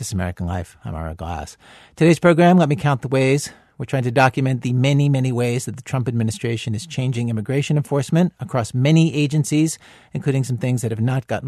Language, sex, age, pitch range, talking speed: English, male, 50-69, 110-145 Hz, 210 wpm